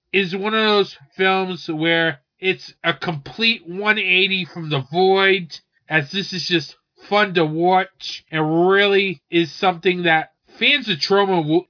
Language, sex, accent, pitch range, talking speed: English, male, American, 150-195 Hz, 150 wpm